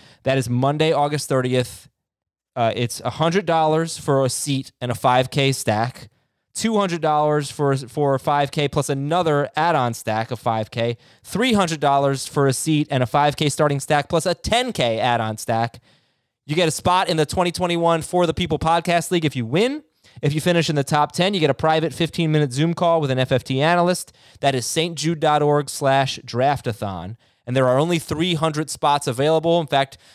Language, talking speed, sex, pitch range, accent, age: English, 175 wpm, male, 125-155 Hz, American, 20-39